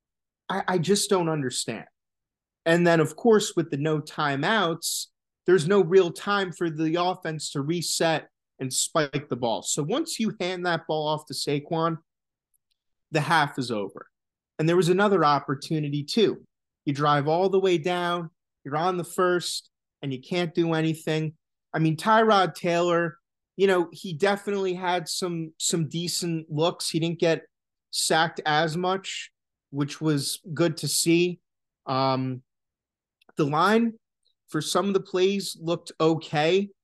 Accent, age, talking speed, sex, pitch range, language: American, 30-49, 150 wpm, male, 145-175 Hz, English